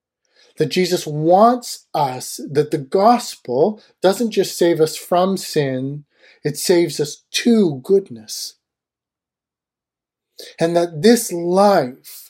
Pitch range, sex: 140-185 Hz, male